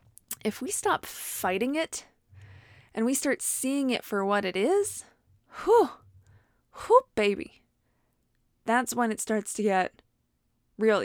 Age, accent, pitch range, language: 20-39, American, 195-255 Hz, English